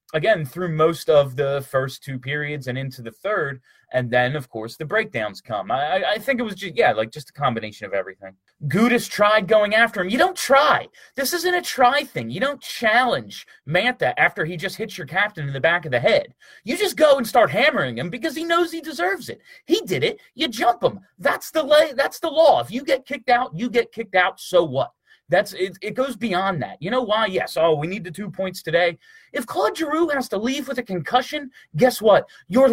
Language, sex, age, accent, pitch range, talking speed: English, male, 30-49, American, 155-255 Hz, 235 wpm